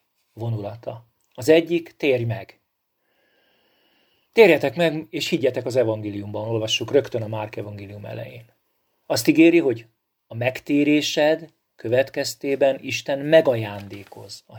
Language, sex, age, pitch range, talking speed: Hungarian, male, 40-59, 110-145 Hz, 105 wpm